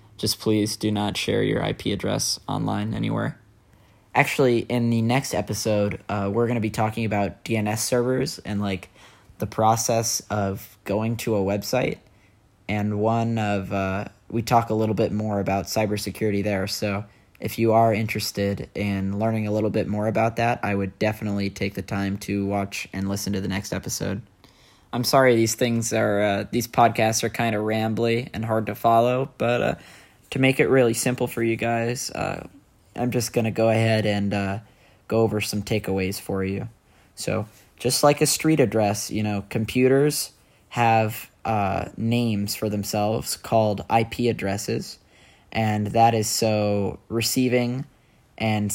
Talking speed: 170 wpm